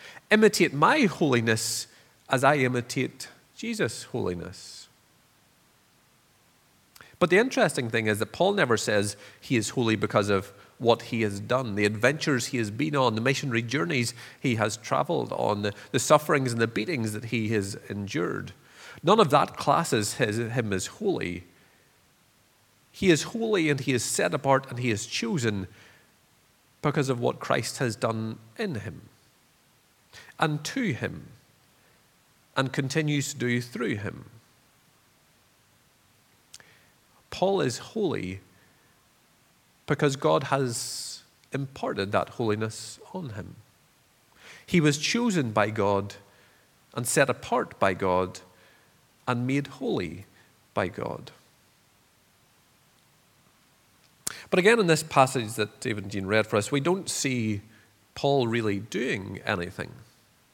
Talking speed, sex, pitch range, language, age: 130 wpm, male, 105-140 Hz, English, 40-59